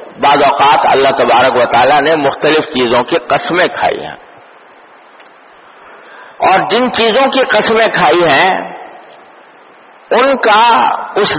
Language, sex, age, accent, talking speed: English, male, 50-69, Indian, 120 wpm